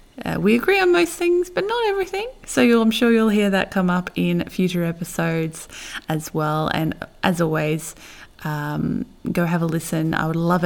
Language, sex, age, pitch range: English, female, 20-39, 160-200 Hz